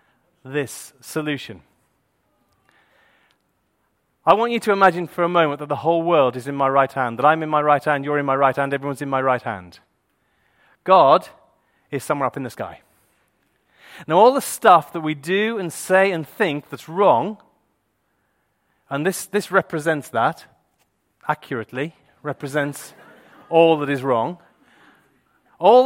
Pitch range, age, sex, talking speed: 145-195 Hz, 30-49, male, 155 wpm